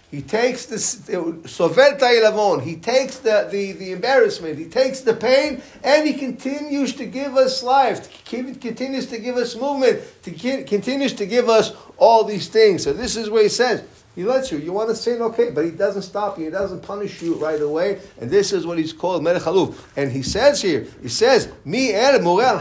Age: 50-69